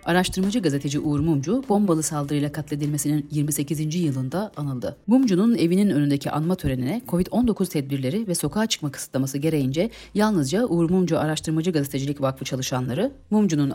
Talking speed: 130 wpm